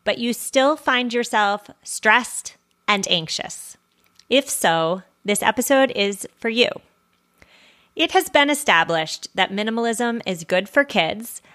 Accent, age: American, 30-49